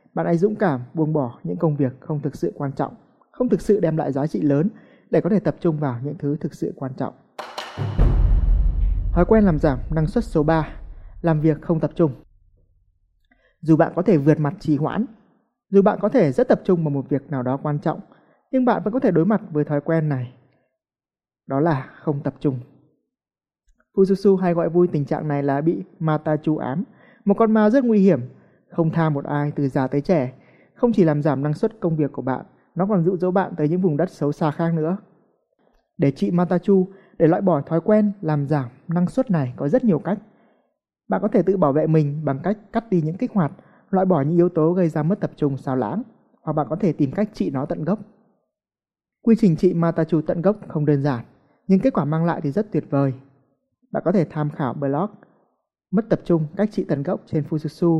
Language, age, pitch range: Vietnamese, 20-39, 145-195 Hz